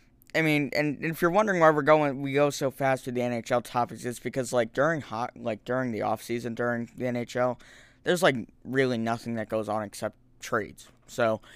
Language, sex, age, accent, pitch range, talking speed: English, male, 10-29, American, 115-135 Hz, 210 wpm